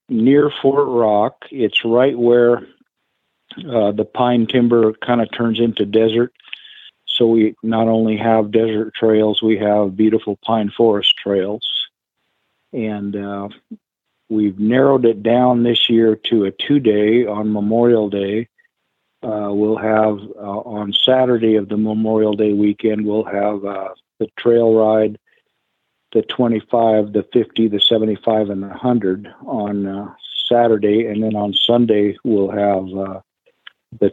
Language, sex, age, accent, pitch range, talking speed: English, male, 50-69, American, 105-120 Hz, 140 wpm